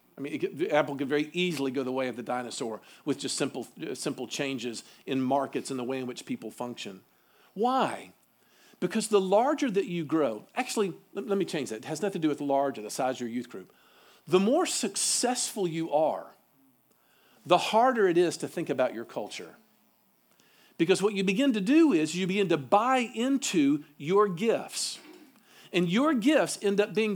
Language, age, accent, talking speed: English, 50-69, American, 190 wpm